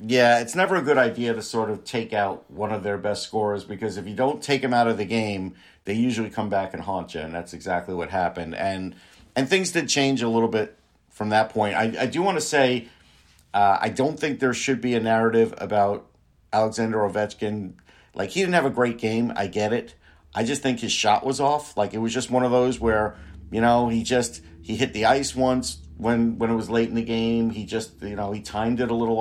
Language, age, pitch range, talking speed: English, 50-69, 100-120 Hz, 240 wpm